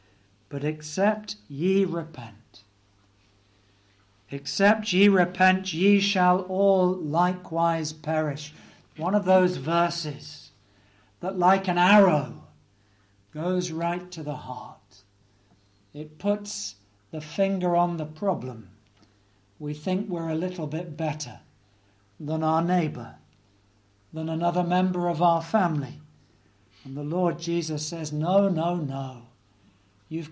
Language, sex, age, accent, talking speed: English, male, 60-79, British, 115 wpm